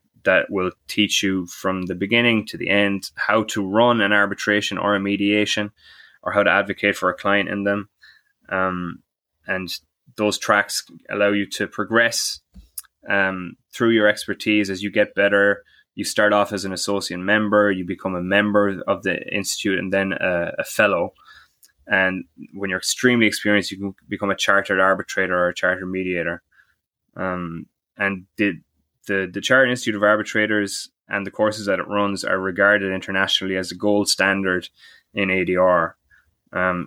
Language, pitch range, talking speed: English, 95-105 Hz, 165 wpm